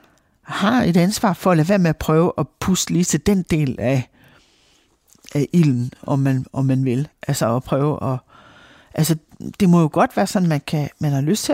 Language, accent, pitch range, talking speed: Danish, native, 140-175 Hz, 215 wpm